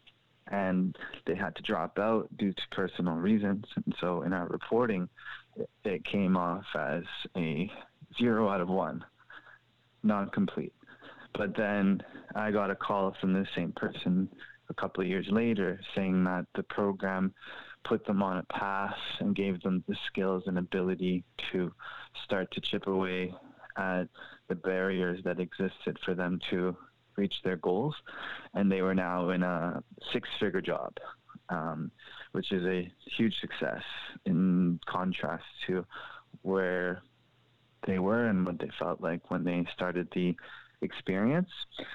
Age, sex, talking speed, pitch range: 20-39, male, 145 wpm, 90-100 Hz